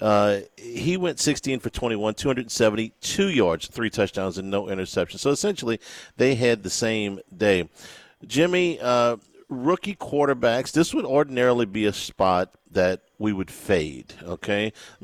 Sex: male